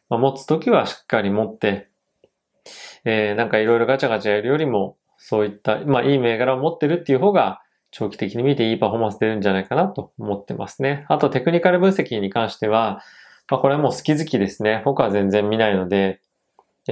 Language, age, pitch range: Japanese, 20-39, 105-130 Hz